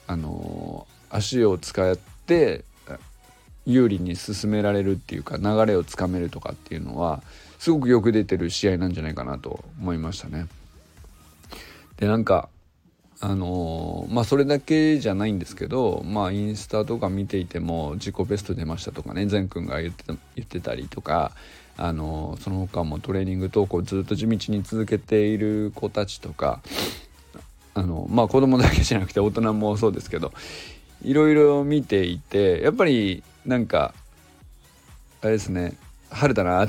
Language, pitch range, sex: Japanese, 90-120 Hz, male